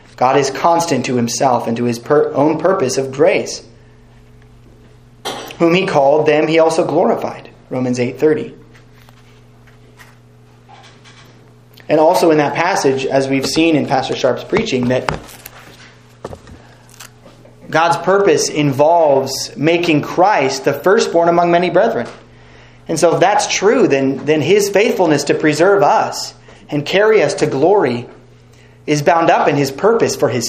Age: 30-49